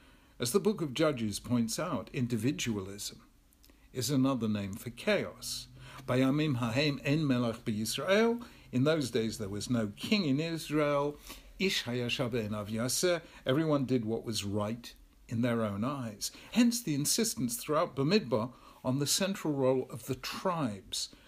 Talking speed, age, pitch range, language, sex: 125 wpm, 50-69, 120-160 Hz, English, male